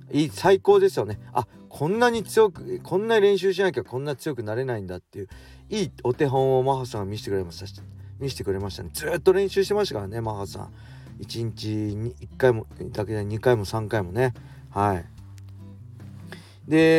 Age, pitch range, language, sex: 40-59, 105-145 Hz, Japanese, male